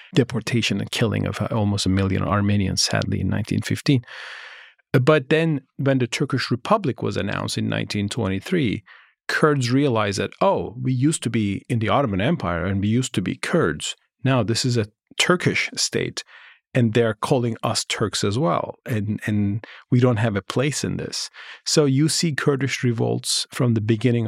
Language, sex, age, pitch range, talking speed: English, male, 40-59, 105-140 Hz, 170 wpm